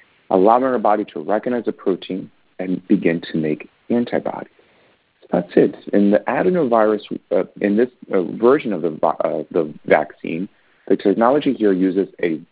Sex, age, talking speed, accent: male, 40-59, 165 wpm, American